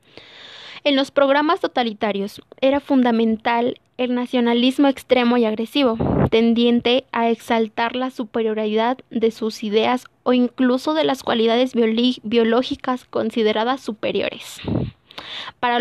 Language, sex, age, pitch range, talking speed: Spanish, female, 20-39, 230-255 Hz, 105 wpm